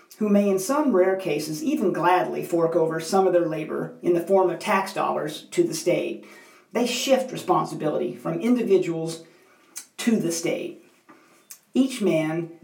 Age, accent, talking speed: 50-69, American, 155 wpm